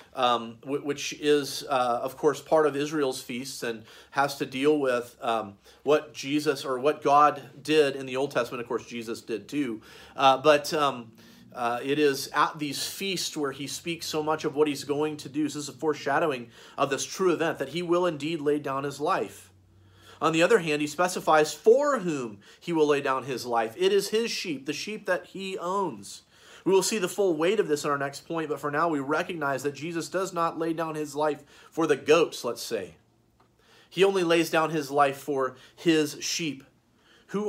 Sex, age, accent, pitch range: male, 40-59, American, 140-180 Hz